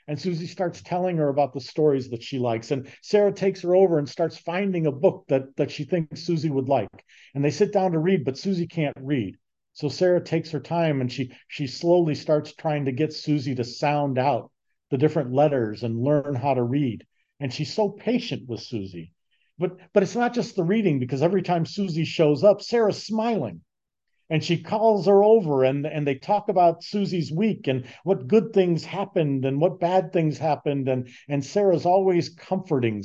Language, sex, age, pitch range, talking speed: English, male, 50-69, 145-195 Hz, 200 wpm